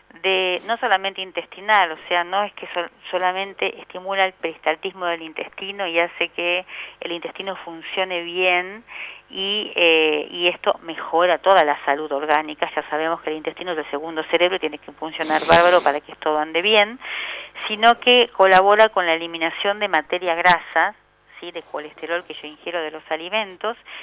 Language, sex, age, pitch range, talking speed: Spanish, female, 40-59, 170-205 Hz, 170 wpm